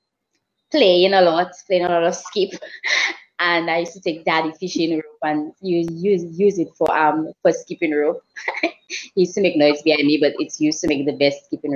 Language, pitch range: English, 150-195 Hz